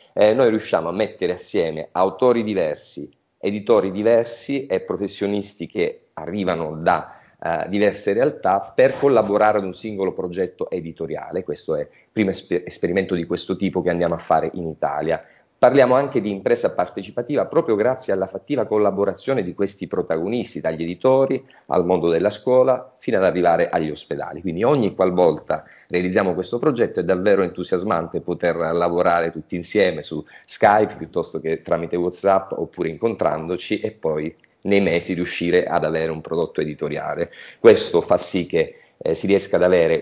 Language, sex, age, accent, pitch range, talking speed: Italian, male, 40-59, native, 90-120 Hz, 155 wpm